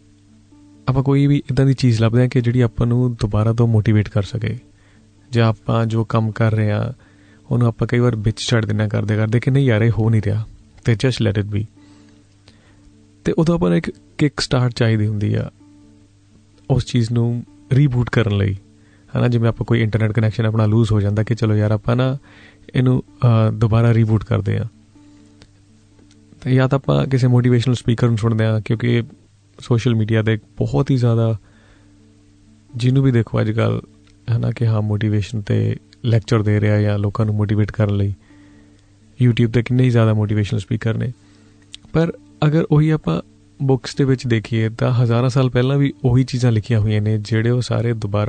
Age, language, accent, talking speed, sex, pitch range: 30-49, English, Indian, 130 wpm, male, 105-120 Hz